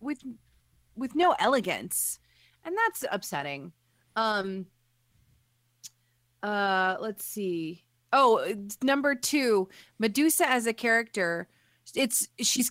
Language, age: English, 30-49